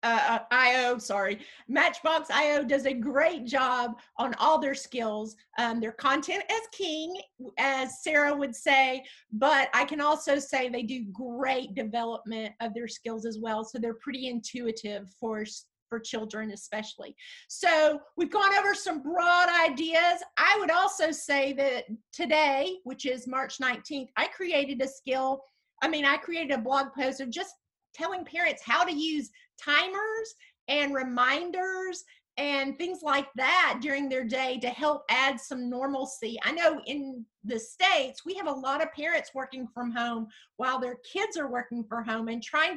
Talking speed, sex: 165 wpm, female